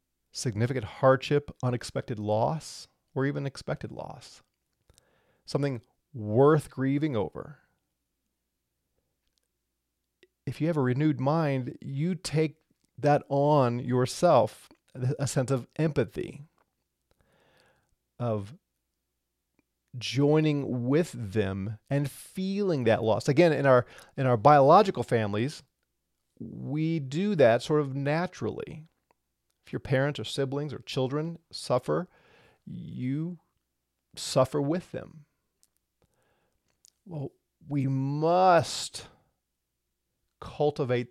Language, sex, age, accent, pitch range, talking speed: English, male, 40-59, American, 115-150 Hz, 95 wpm